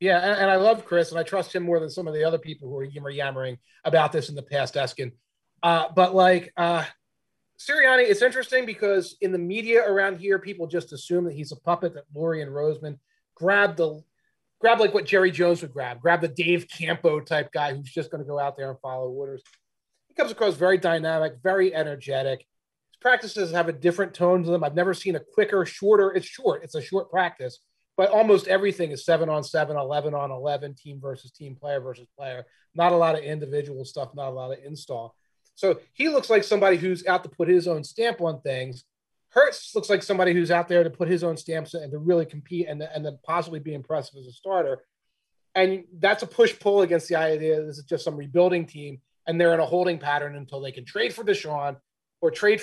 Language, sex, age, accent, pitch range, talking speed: English, male, 30-49, American, 145-185 Hz, 220 wpm